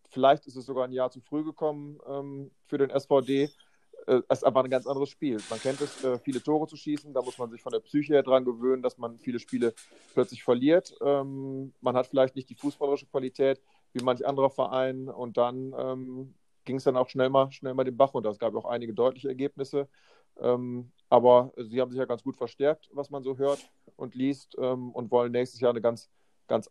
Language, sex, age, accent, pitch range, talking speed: German, male, 30-49, German, 125-140 Hz, 225 wpm